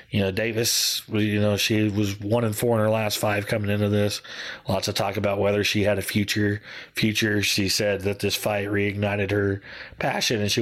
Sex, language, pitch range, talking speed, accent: male, English, 105-120 Hz, 210 wpm, American